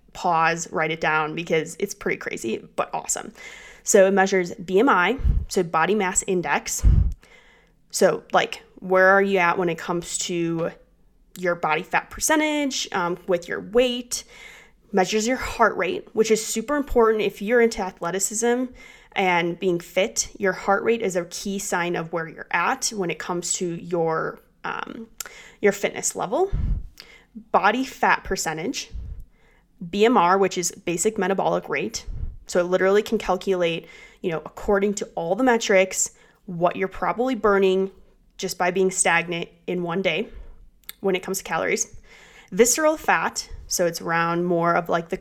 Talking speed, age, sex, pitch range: 155 wpm, 20-39, female, 175-215 Hz